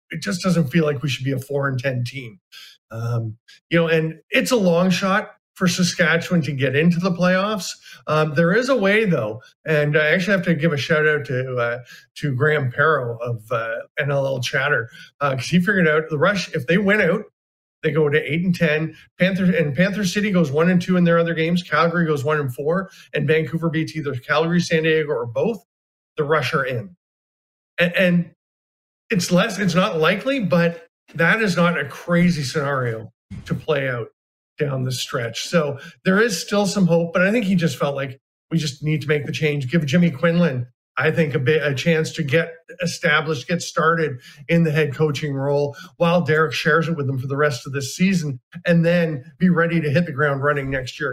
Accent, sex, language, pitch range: American, male, English, 140-175 Hz